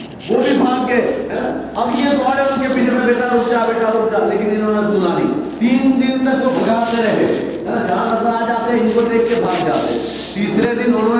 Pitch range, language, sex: 200-245 Hz, Urdu, male